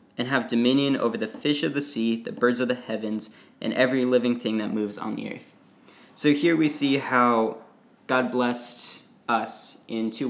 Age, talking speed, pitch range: 20-39, 190 wpm, 110-135 Hz